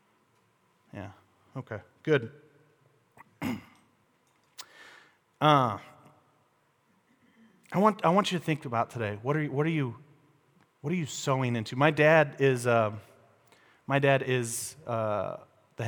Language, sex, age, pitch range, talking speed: English, male, 30-49, 115-150 Hz, 125 wpm